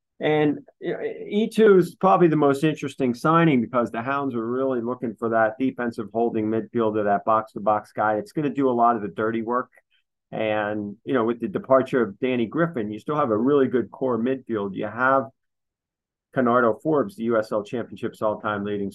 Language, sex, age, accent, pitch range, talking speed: English, male, 40-59, American, 105-130 Hz, 185 wpm